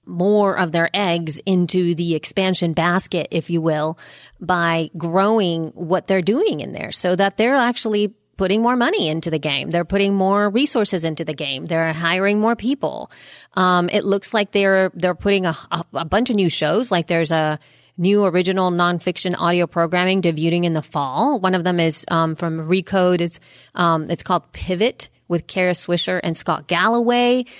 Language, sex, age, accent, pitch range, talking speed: English, female, 30-49, American, 165-200 Hz, 180 wpm